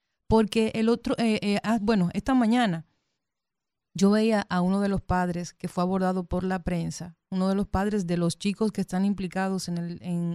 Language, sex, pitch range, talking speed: Spanish, female, 185-220 Hz, 205 wpm